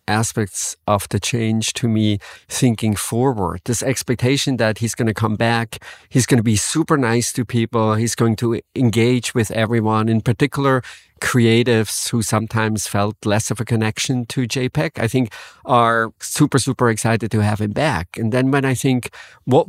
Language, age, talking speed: English, 50-69, 175 wpm